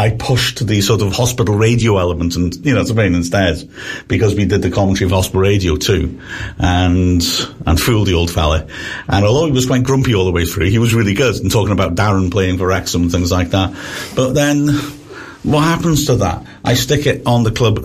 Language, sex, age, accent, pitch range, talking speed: English, male, 50-69, British, 95-125 Hz, 230 wpm